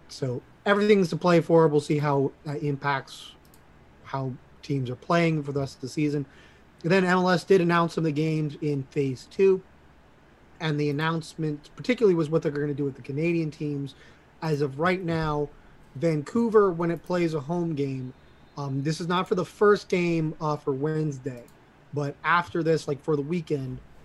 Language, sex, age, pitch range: English, male, 30-49, 140-165 Hz